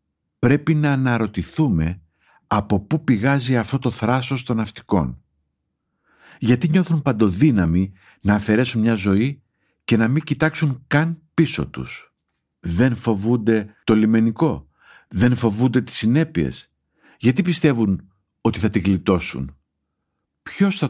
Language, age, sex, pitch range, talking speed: Greek, 50-69, male, 95-130 Hz, 120 wpm